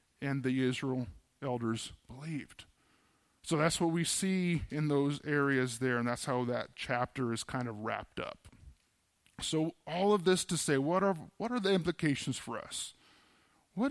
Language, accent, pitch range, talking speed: English, American, 125-170 Hz, 170 wpm